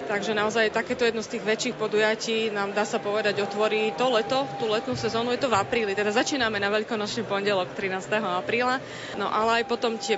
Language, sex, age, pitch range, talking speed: Slovak, female, 30-49, 205-235 Hz, 200 wpm